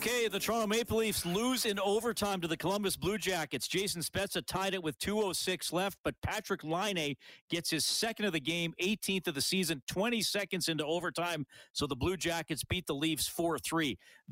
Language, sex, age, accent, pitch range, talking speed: English, male, 40-59, American, 150-195 Hz, 190 wpm